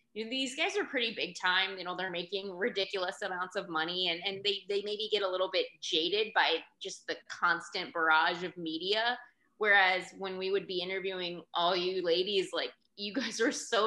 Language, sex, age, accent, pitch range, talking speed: English, female, 20-39, American, 175-225 Hz, 205 wpm